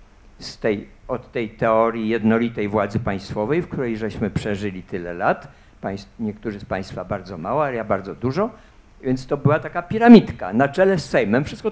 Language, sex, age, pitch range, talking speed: Polish, male, 50-69, 105-165 Hz, 155 wpm